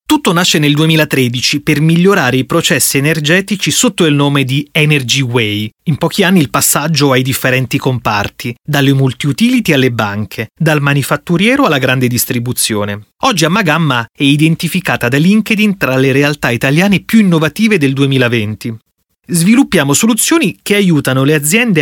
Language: Italian